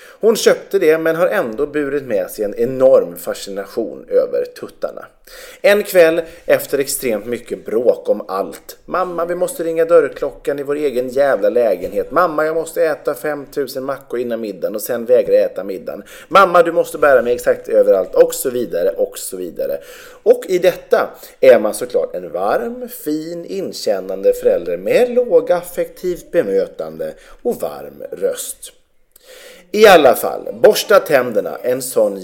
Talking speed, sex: 155 wpm, male